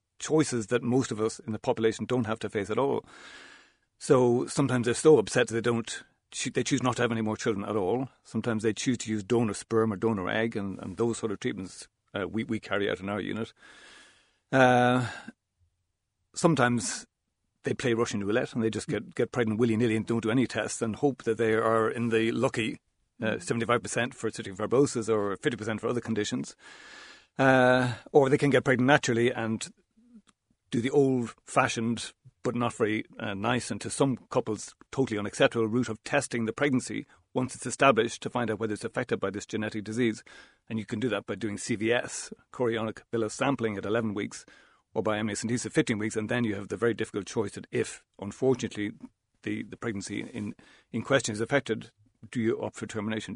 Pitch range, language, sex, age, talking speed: 110-125 Hz, English, male, 40-59, 195 wpm